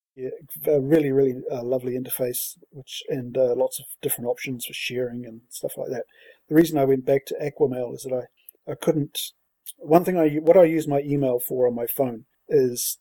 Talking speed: 210 wpm